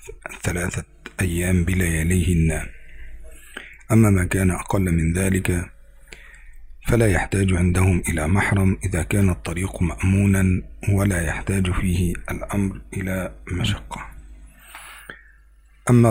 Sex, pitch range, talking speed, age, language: male, 85-100 Hz, 95 wpm, 50-69, Indonesian